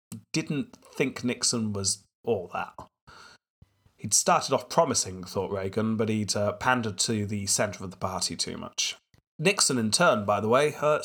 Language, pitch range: English, 100-125 Hz